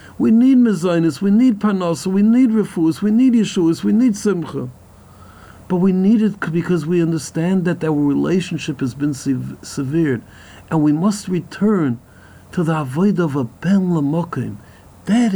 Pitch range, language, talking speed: 115-165 Hz, English, 155 wpm